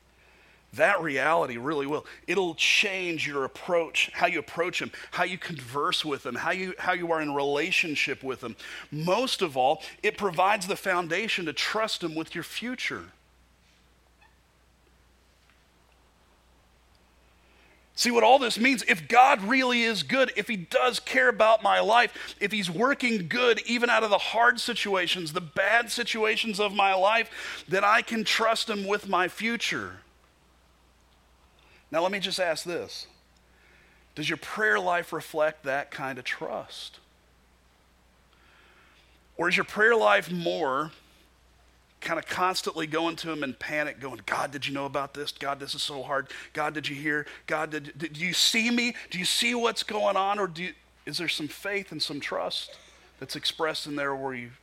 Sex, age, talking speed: male, 40-59, 165 wpm